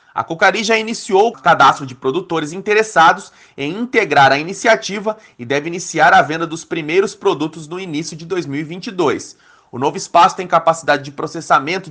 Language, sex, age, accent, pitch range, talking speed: Portuguese, male, 30-49, Brazilian, 165-215 Hz, 160 wpm